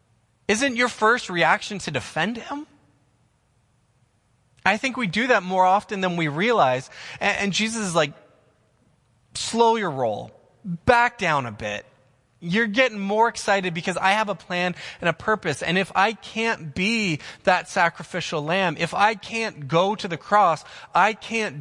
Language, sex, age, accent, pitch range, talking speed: English, male, 20-39, American, 125-170 Hz, 160 wpm